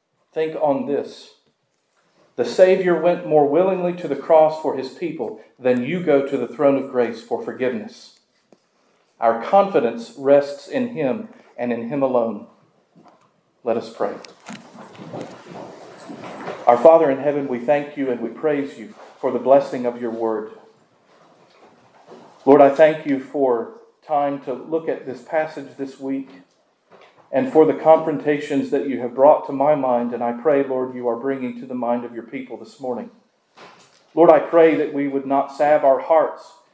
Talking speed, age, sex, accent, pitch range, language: 165 wpm, 40-59, male, American, 130-155 Hz, English